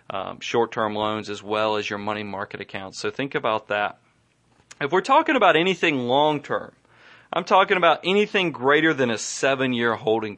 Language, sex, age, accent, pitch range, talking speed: English, male, 30-49, American, 115-160 Hz, 170 wpm